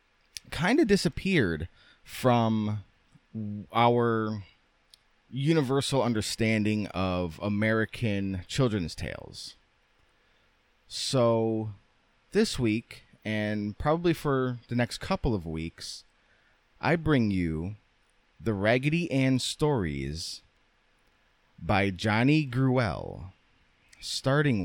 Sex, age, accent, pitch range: male, 30-49, American, 90-125 Hz